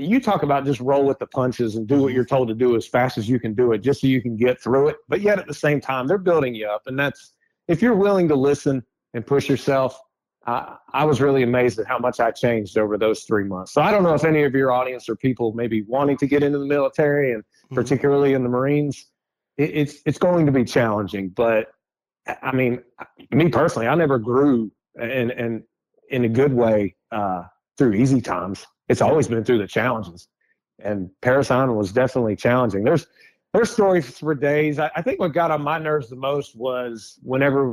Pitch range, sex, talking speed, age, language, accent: 120-150 Hz, male, 220 wpm, 30-49, English, American